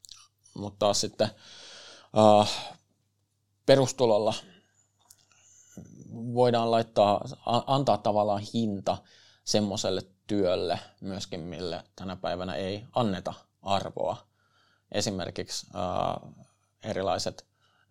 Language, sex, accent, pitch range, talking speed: Finnish, male, native, 100-110 Hz, 65 wpm